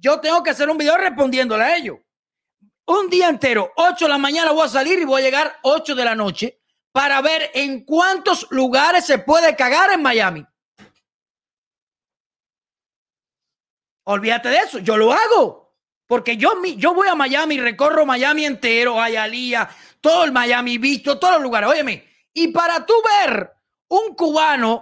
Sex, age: male, 30-49